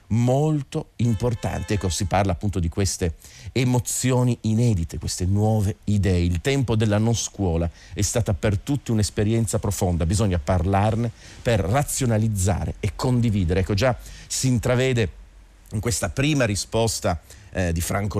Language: Italian